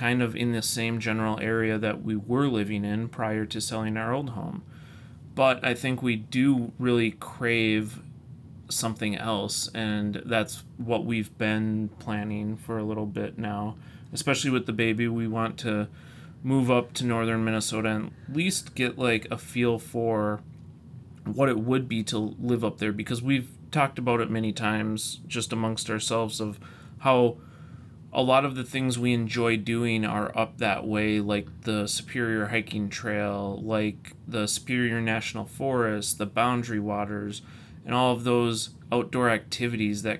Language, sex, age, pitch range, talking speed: English, male, 30-49, 110-125 Hz, 165 wpm